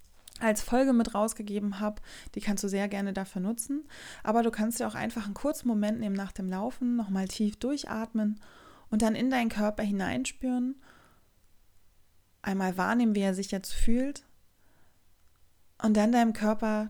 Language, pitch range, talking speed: German, 185-230 Hz, 160 wpm